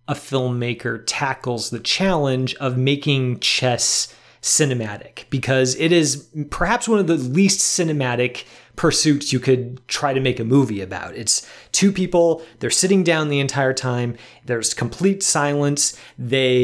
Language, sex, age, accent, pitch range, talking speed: English, male, 30-49, American, 125-165 Hz, 145 wpm